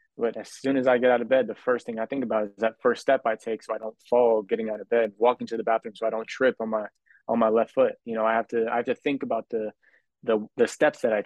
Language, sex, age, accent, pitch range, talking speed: English, male, 20-39, American, 110-120 Hz, 315 wpm